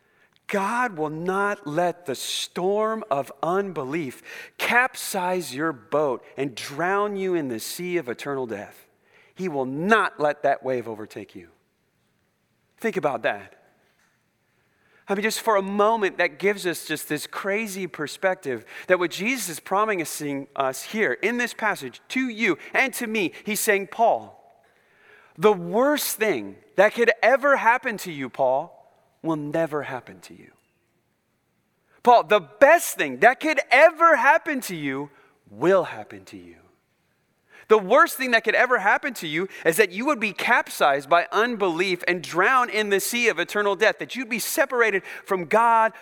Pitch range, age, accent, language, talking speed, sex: 160-230 Hz, 30-49, American, English, 160 wpm, male